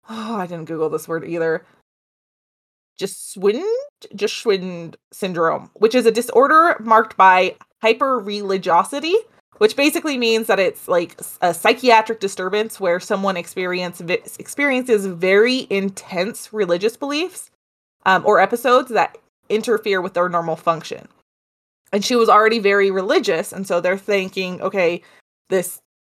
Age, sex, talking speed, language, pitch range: 20-39, female, 125 wpm, English, 190-250 Hz